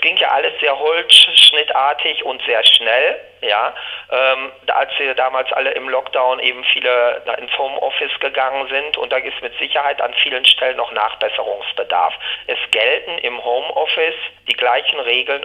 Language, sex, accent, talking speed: German, male, German, 150 wpm